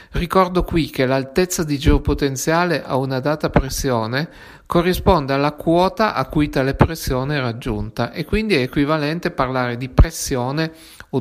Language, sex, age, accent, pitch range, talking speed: Italian, male, 50-69, native, 130-175 Hz, 145 wpm